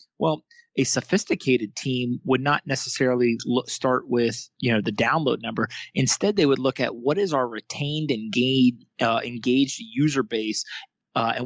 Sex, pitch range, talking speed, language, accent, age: male, 120-150 Hz, 160 wpm, English, American, 30-49